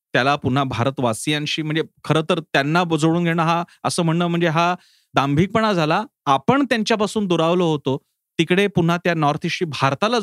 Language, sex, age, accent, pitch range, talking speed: Marathi, male, 30-49, native, 135-180 Hz, 65 wpm